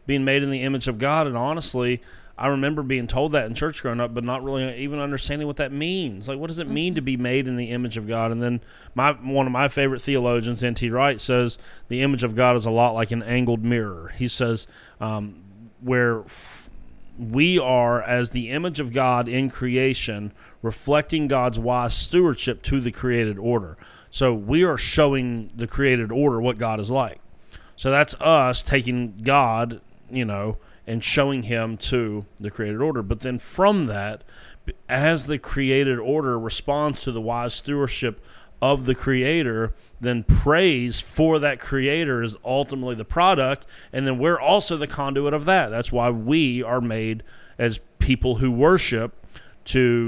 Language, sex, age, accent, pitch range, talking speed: English, male, 30-49, American, 115-140 Hz, 180 wpm